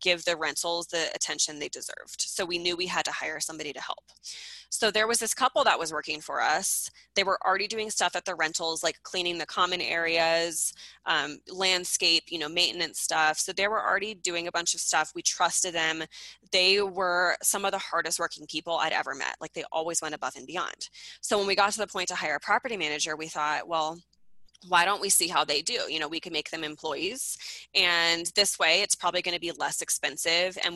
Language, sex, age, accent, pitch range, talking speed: English, female, 20-39, American, 160-195 Hz, 225 wpm